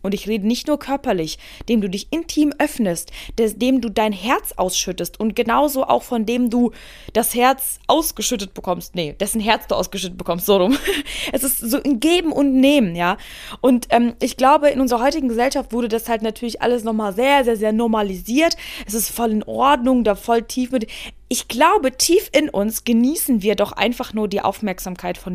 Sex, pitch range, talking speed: female, 215-275 Hz, 195 wpm